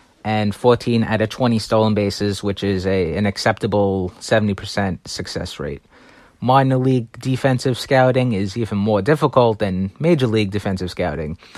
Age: 30-49